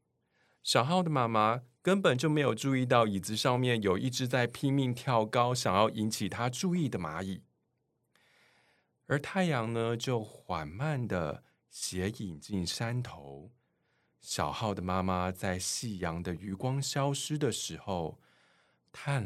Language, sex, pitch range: Chinese, male, 100-145 Hz